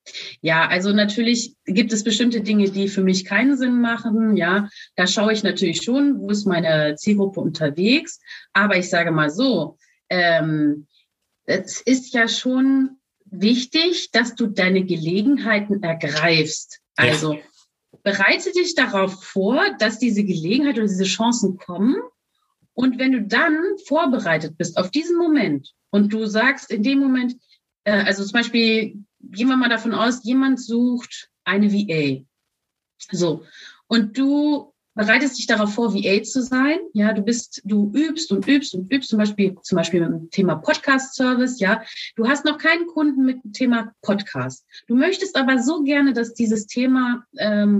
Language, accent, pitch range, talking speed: German, German, 195-260 Hz, 155 wpm